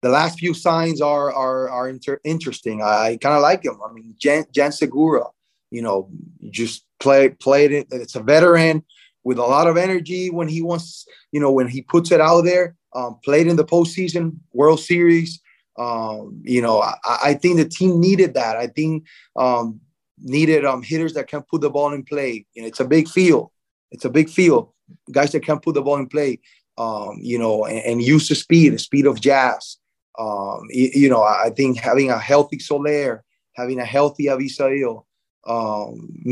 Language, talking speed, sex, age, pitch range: English, 195 wpm, male, 20-39, 125-155 Hz